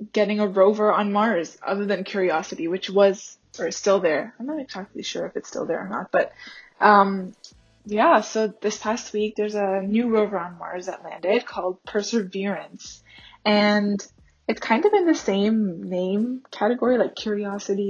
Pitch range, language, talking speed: 190-220 Hz, English, 175 wpm